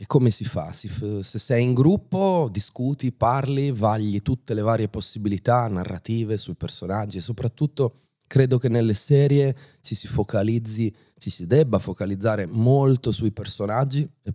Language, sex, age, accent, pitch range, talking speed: Italian, male, 30-49, native, 105-130 Hz, 145 wpm